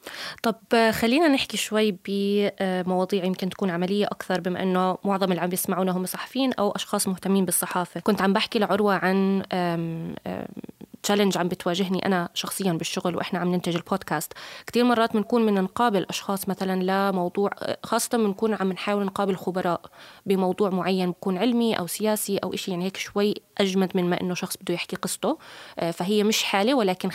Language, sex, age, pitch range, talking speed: Arabic, female, 20-39, 180-215 Hz, 165 wpm